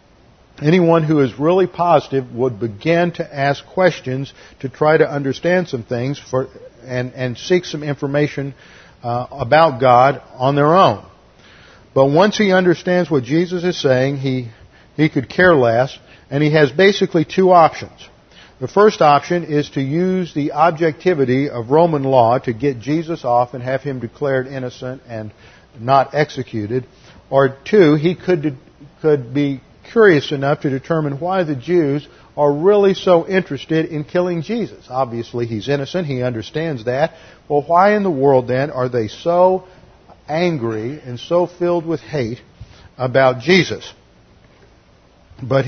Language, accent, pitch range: English, American, 125-170 Hz